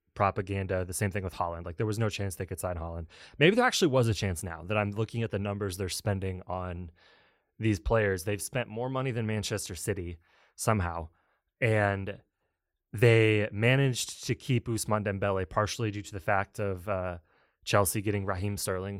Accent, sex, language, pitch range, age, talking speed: American, male, English, 95-110 Hz, 20-39, 185 wpm